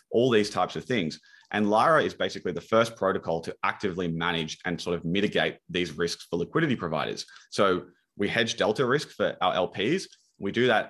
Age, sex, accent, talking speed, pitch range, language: 30-49, male, Australian, 195 wpm, 90-110 Hz, English